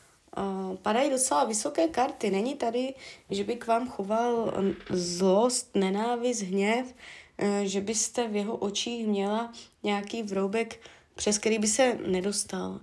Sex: female